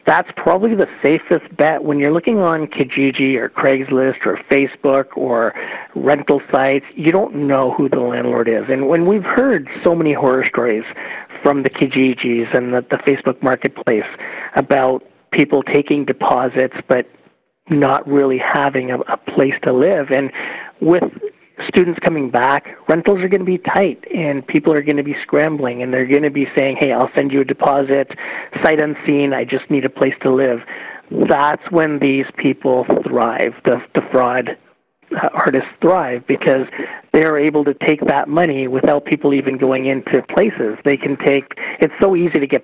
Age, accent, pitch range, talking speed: 40-59, American, 130-145 Hz, 175 wpm